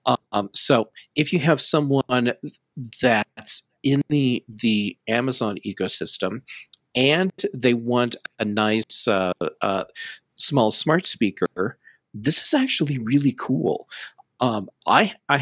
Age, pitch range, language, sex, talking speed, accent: 40-59, 110-135 Hz, English, male, 115 wpm, American